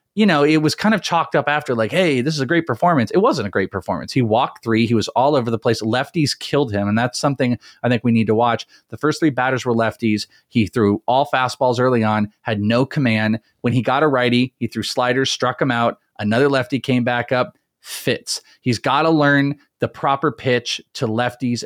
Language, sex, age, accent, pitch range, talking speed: English, male, 30-49, American, 110-140 Hz, 230 wpm